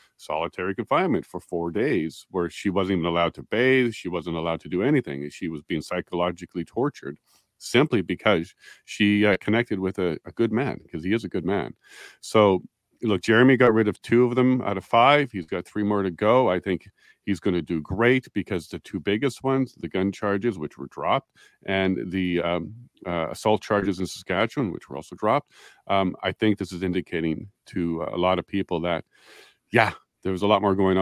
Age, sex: 40-59, male